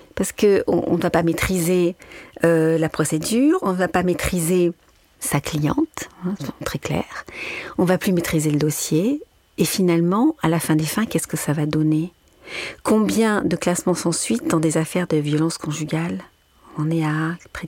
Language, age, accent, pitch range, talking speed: French, 50-69, French, 155-185 Hz, 185 wpm